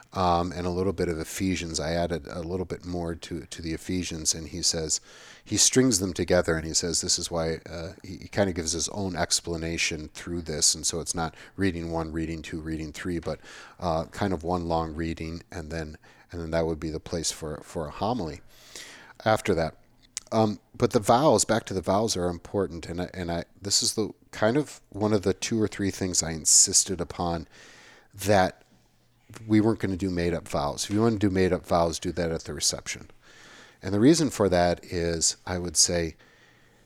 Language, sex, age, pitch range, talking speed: English, male, 40-59, 80-95 Hz, 215 wpm